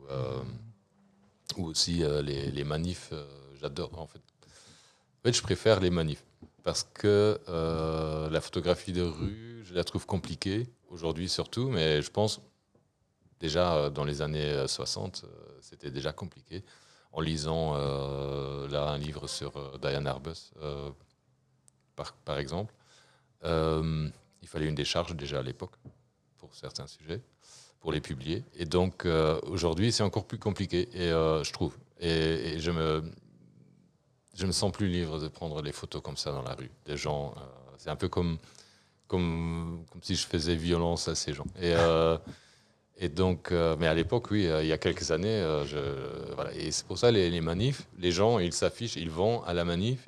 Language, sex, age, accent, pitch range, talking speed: English, male, 40-59, French, 75-95 Hz, 180 wpm